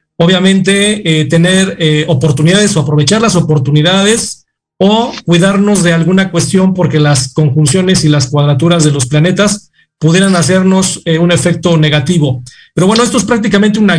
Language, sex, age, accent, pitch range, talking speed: Spanish, male, 40-59, Mexican, 160-195 Hz, 150 wpm